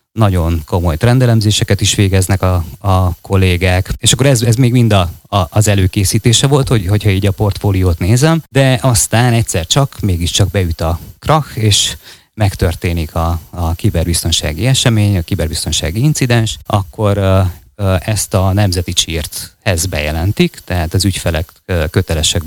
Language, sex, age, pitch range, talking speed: Hungarian, male, 30-49, 90-110 Hz, 140 wpm